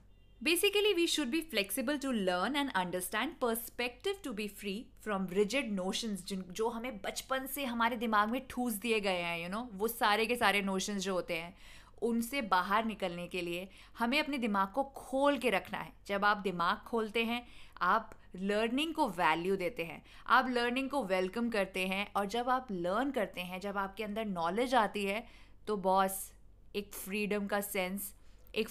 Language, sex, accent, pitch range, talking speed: Hindi, female, native, 195-265 Hz, 180 wpm